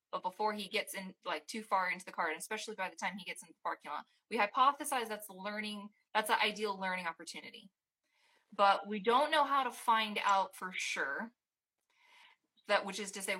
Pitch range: 190-225 Hz